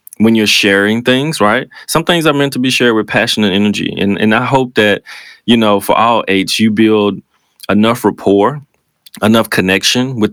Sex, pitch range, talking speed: male, 105-125 Hz, 190 wpm